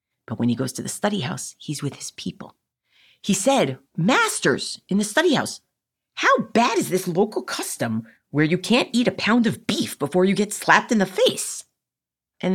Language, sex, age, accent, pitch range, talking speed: English, female, 40-59, American, 135-205 Hz, 195 wpm